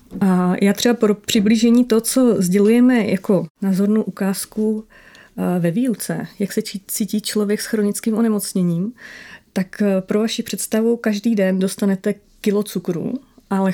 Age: 30-49